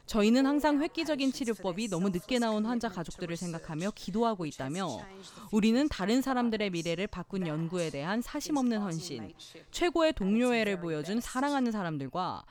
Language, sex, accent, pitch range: Korean, female, native, 175-255 Hz